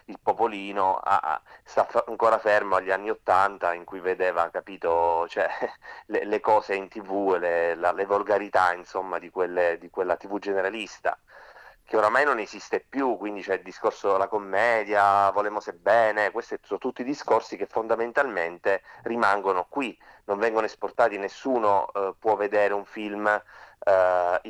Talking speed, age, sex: 155 wpm, 30-49, male